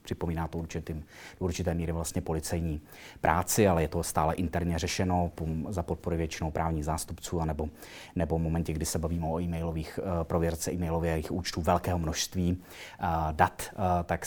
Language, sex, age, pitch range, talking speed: Czech, male, 30-49, 80-90 Hz, 155 wpm